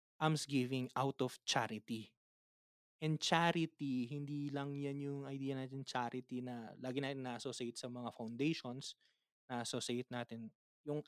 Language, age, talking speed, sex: Filipino, 20-39, 125 wpm, male